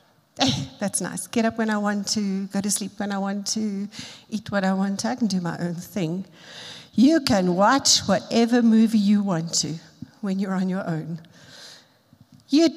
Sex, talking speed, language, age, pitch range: female, 195 wpm, English, 50-69, 200-260 Hz